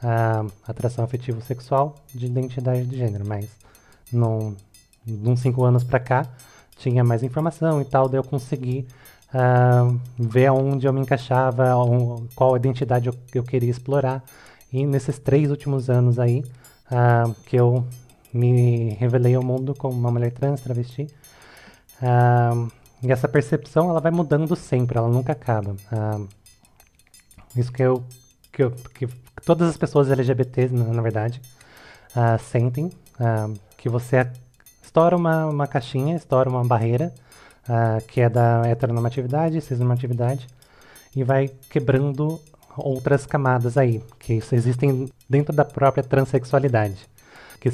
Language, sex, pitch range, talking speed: Portuguese, male, 120-135 Hz, 140 wpm